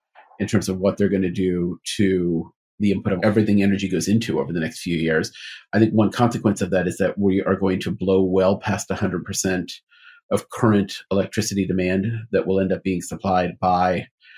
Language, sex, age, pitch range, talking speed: English, male, 40-59, 95-105 Hz, 200 wpm